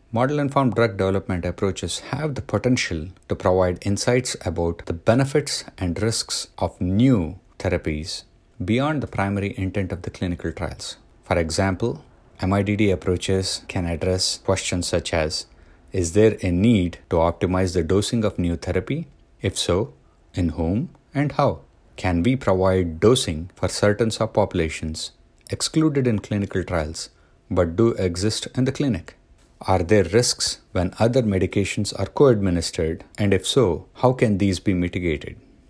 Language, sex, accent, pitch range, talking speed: English, male, Indian, 85-110 Hz, 145 wpm